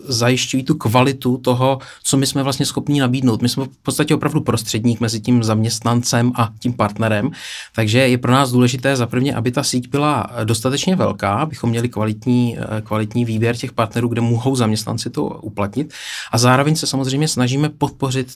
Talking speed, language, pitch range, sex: 170 wpm, Czech, 115-140 Hz, male